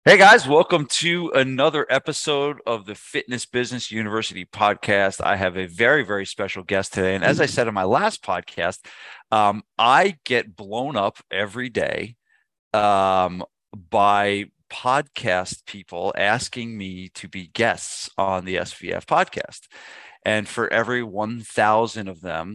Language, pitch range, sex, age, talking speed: English, 95-115 Hz, male, 40-59, 145 wpm